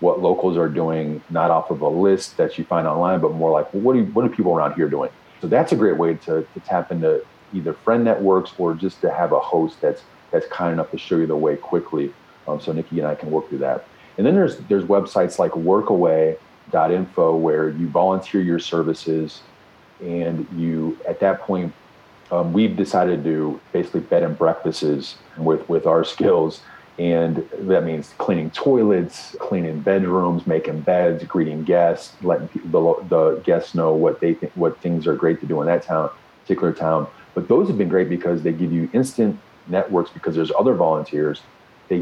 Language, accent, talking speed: English, American, 200 wpm